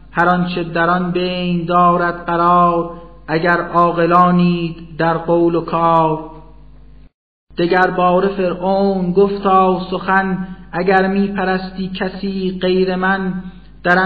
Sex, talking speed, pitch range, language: male, 100 wpm, 175-185 Hz, Persian